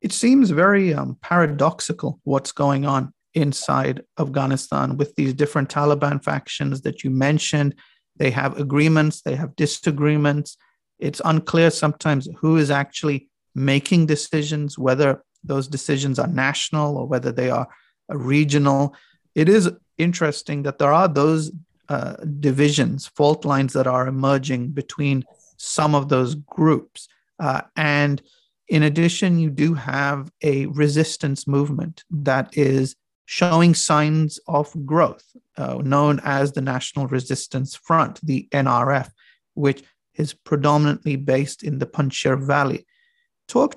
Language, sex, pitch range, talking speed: English, male, 140-160 Hz, 130 wpm